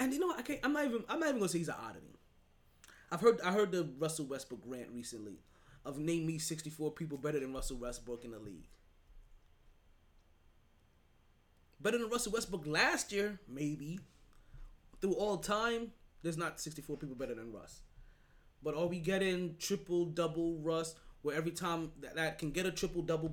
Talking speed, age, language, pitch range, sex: 185 wpm, 20-39, English, 120-185 Hz, male